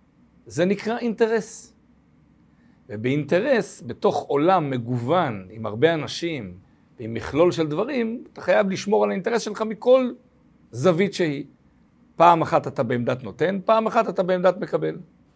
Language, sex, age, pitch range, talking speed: Hebrew, male, 50-69, 130-205 Hz, 130 wpm